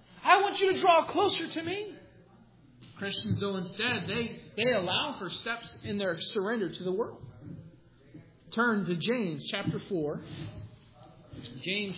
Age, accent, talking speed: 40-59, American, 140 wpm